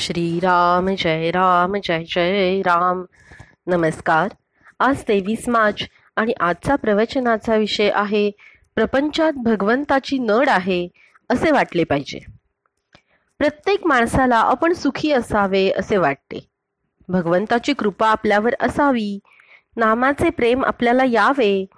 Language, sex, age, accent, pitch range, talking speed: Marathi, female, 30-49, native, 200-270 Hz, 105 wpm